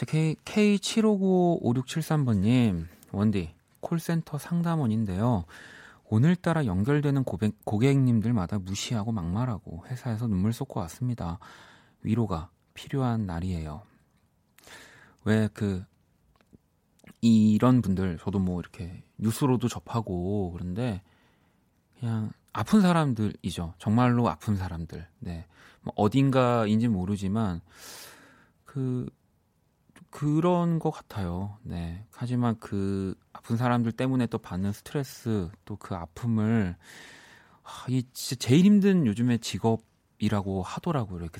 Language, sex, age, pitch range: Korean, male, 30-49, 95-130 Hz